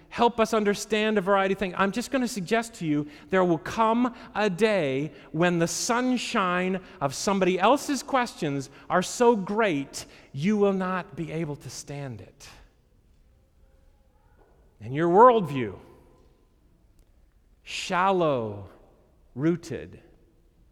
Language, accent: English, American